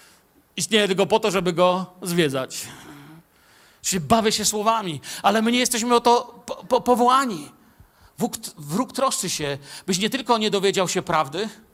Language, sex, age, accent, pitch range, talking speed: Polish, male, 50-69, native, 180-225 Hz, 140 wpm